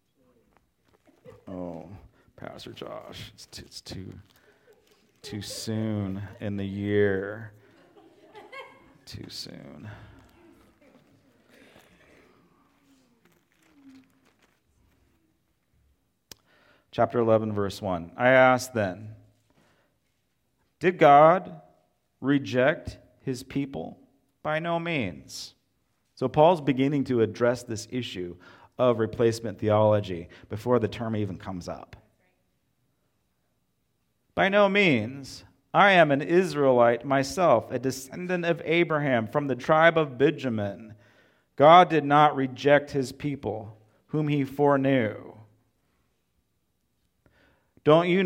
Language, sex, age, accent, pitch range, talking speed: English, male, 40-59, American, 105-145 Hz, 90 wpm